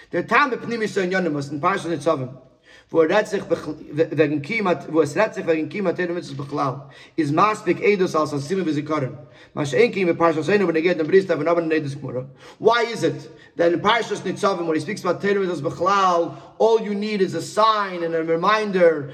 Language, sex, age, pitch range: English, male, 30-49, 155-200 Hz